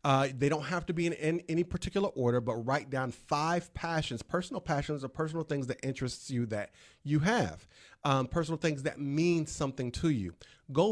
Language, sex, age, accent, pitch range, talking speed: English, male, 40-59, American, 130-165 Hz, 200 wpm